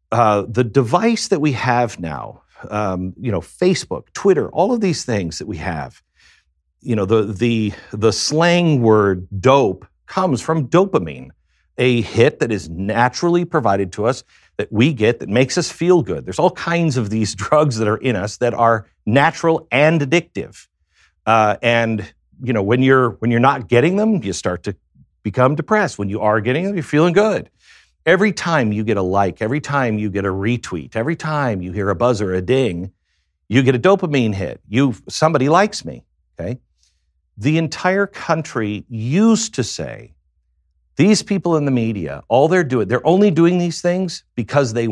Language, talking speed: English, 180 wpm